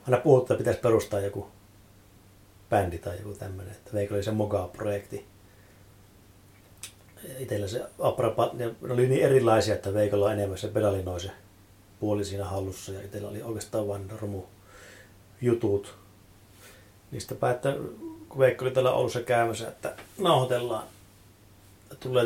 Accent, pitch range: native, 100-110 Hz